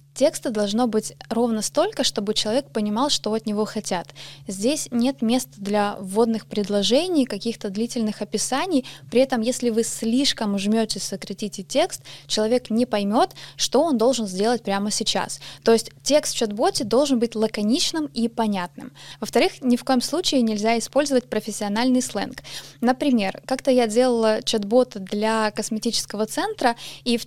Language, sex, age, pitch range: Russian, female, 20-39, 210-255 Hz